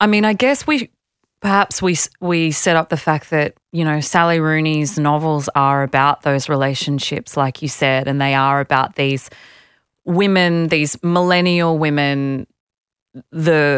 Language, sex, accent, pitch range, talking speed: English, female, Australian, 140-170 Hz, 150 wpm